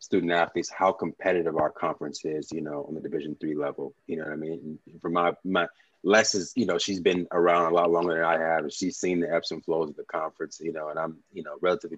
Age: 20-39